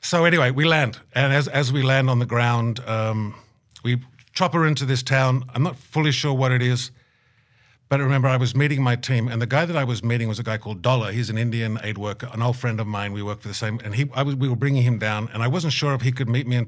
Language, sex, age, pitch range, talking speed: English, male, 50-69, 110-130 Hz, 290 wpm